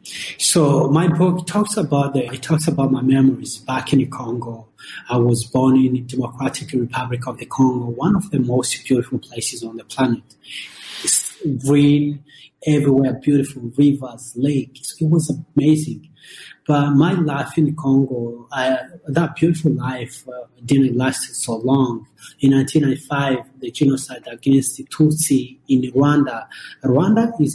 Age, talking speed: 30-49, 150 wpm